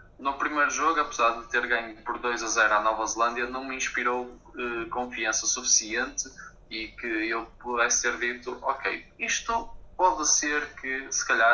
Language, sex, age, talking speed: Portuguese, male, 20-39, 170 wpm